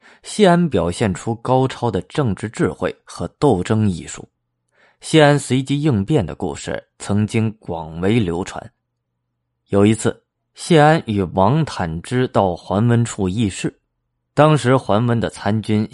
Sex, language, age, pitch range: male, Chinese, 20-39, 85-125 Hz